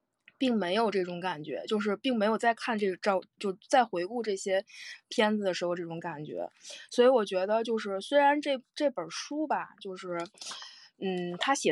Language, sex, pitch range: Chinese, female, 180-225 Hz